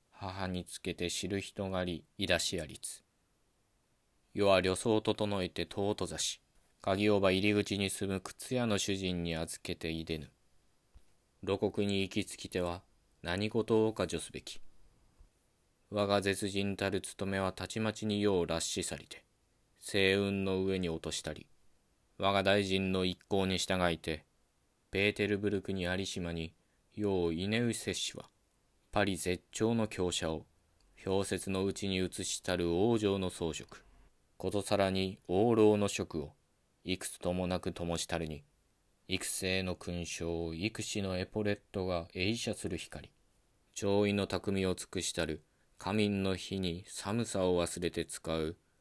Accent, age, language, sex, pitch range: native, 20-39, Japanese, male, 90-100 Hz